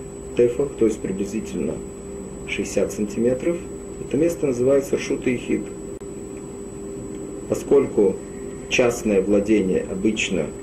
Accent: native